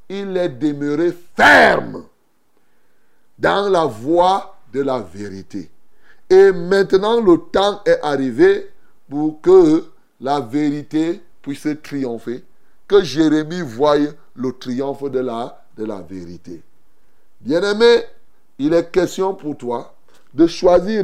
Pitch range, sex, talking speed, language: 140-195 Hz, male, 110 wpm, French